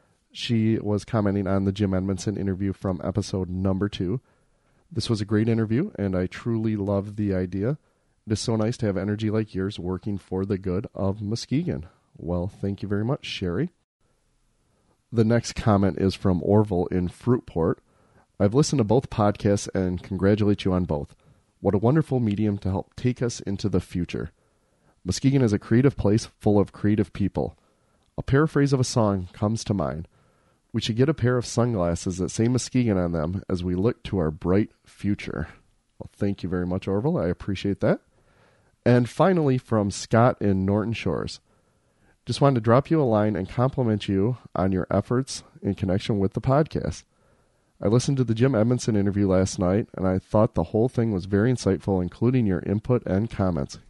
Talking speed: 185 wpm